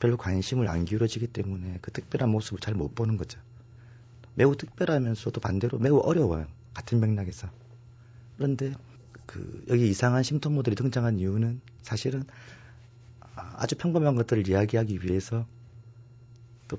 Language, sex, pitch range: Korean, male, 105-125 Hz